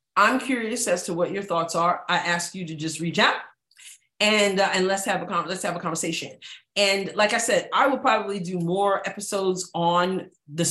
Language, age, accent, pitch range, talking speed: English, 40-59, American, 150-175 Hz, 215 wpm